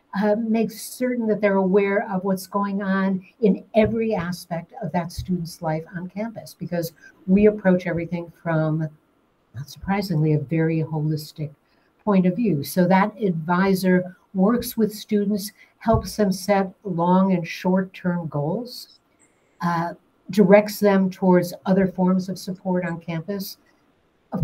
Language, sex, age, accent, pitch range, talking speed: English, female, 60-79, American, 175-205 Hz, 135 wpm